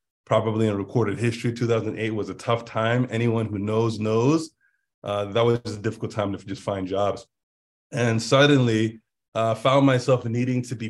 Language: English